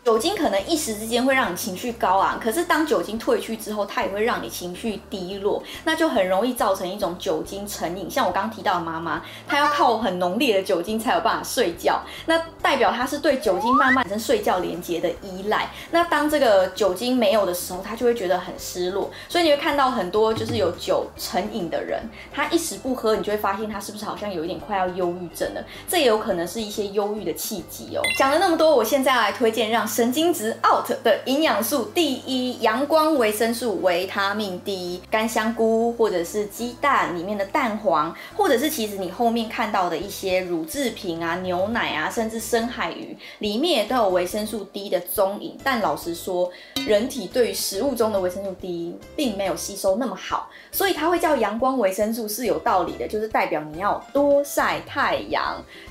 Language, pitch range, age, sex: Chinese, 195-270 Hz, 20-39, female